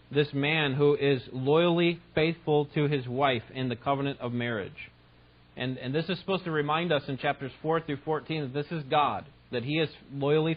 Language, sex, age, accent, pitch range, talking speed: English, male, 30-49, American, 100-140 Hz, 200 wpm